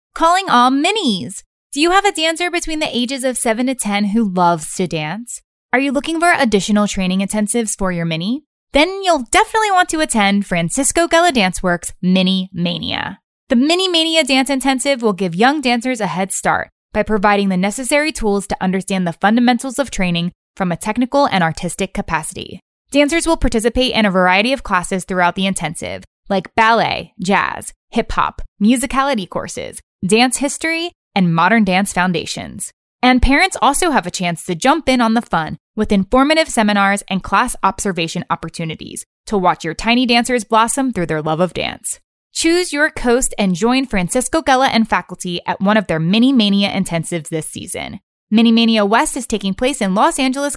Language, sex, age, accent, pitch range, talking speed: English, female, 20-39, American, 190-270 Hz, 180 wpm